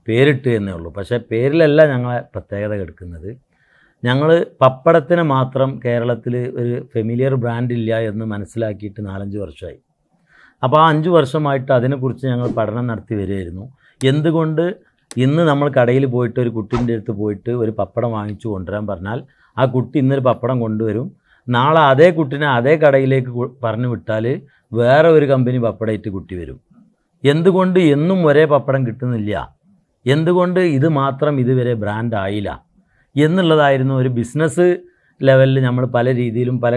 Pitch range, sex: 110-140 Hz, male